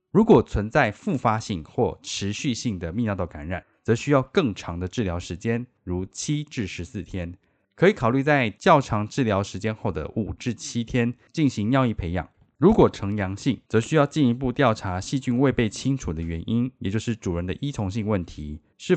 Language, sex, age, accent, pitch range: Chinese, male, 20-39, native, 90-130 Hz